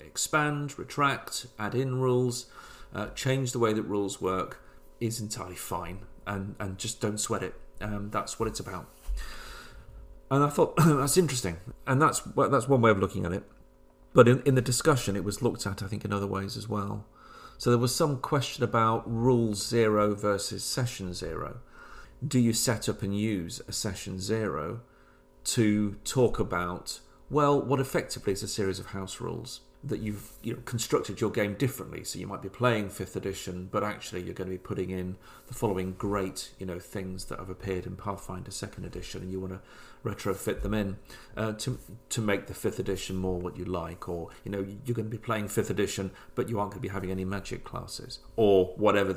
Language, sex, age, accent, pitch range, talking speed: English, male, 40-59, British, 95-120 Hz, 200 wpm